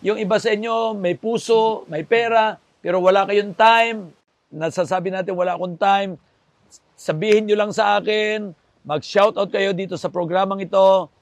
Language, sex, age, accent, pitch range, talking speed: Filipino, male, 50-69, native, 175-215 Hz, 160 wpm